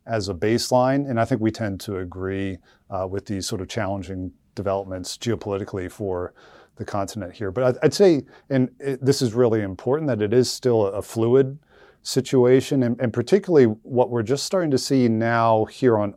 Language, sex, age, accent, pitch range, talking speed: English, male, 40-59, American, 105-125 Hz, 180 wpm